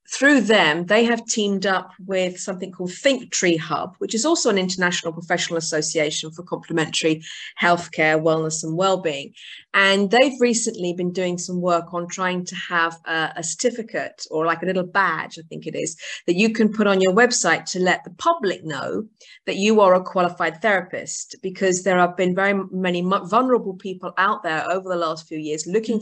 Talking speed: 190 wpm